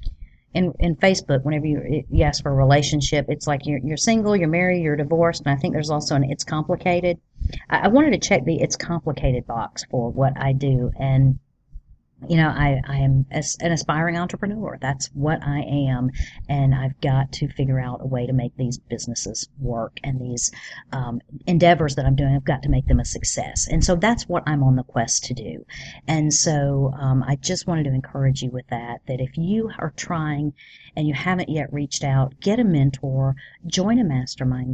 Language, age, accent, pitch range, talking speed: English, 40-59, American, 130-165 Hz, 205 wpm